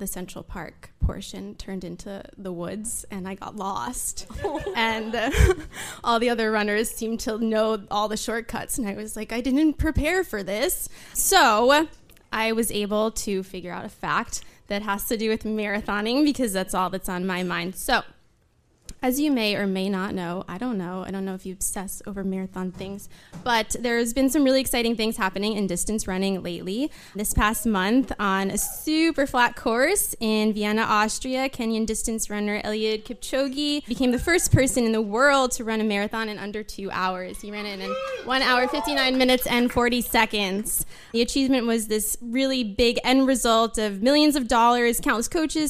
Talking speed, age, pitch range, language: 190 wpm, 20-39, 200-250 Hz, English